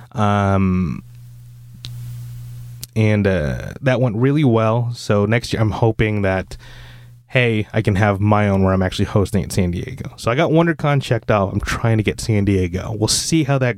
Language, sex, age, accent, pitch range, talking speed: English, male, 20-39, American, 100-125 Hz, 185 wpm